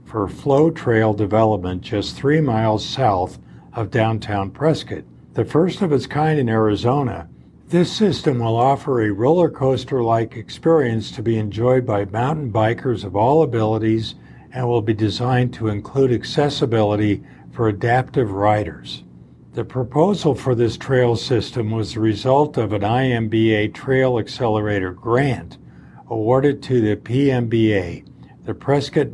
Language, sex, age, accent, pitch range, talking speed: English, male, 50-69, American, 105-130 Hz, 135 wpm